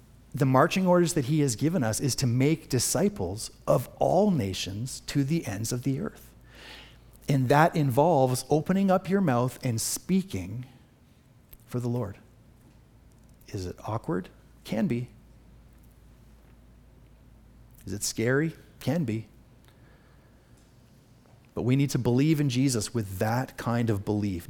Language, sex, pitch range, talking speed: English, male, 115-140 Hz, 135 wpm